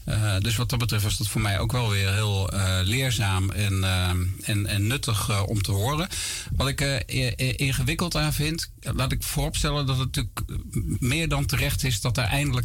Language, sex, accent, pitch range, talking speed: Dutch, male, Dutch, 100-125 Hz, 205 wpm